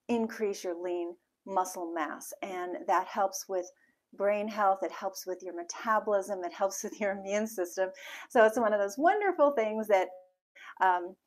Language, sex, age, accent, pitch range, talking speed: English, female, 40-59, American, 185-225 Hz, 165 wpm